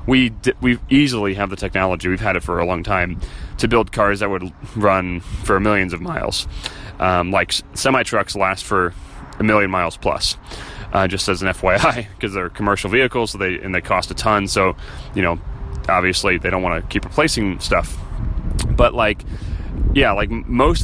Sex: male